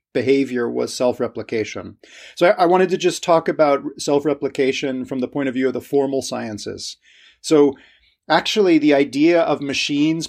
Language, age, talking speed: English, 30-49, 165 wpm